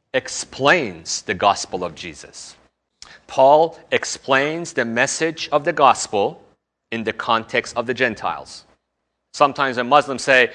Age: 40-59